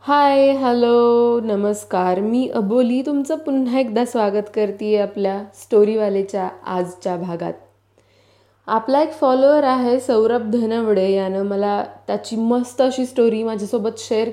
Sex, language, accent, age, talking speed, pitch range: female, Marathi, native, 20-39, 100 wpm, 210-250 Hz